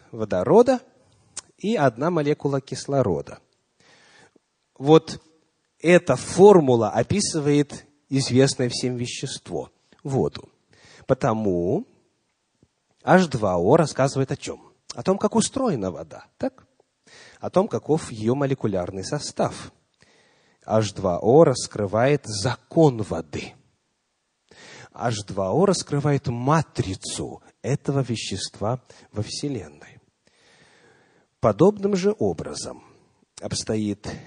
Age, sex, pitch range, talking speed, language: 30-49, male, 110-160 Hz, 80 wpm, English